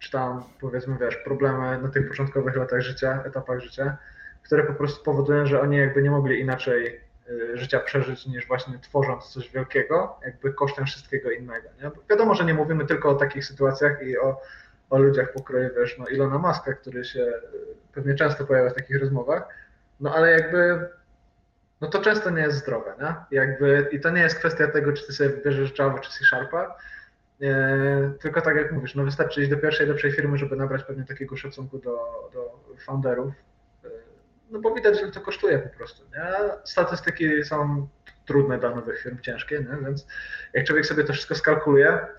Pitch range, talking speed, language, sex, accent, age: 135-155 Hz, 180 wpm, Polish, male, native, 20-39